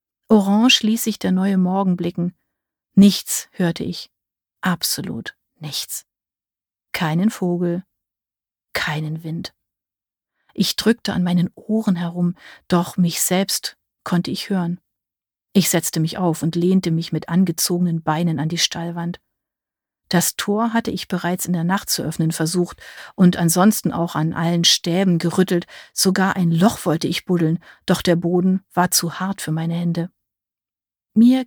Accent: German